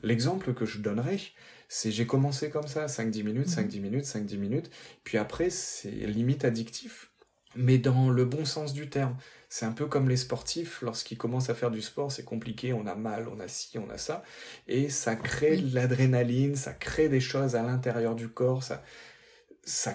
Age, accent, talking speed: 30-49, French, 195 wpm